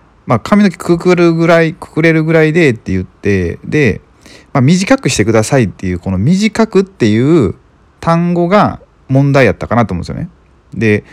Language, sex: Japanese, male